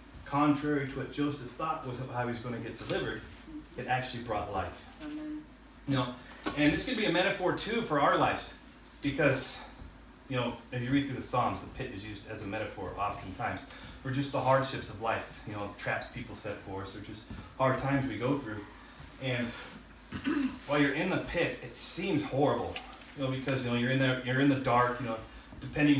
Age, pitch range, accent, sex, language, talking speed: 30-49, 125-160 Hz, American, male, English, 210 wpm